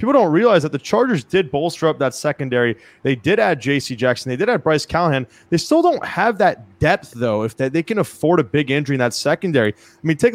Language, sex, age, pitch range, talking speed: English, male, 20-39, 135-175 Hz, 245 wpm